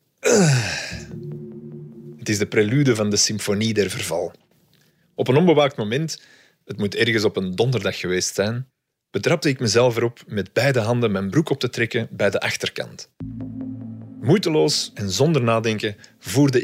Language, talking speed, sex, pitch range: Dutch, 150 wpm, male, 100-135 Hz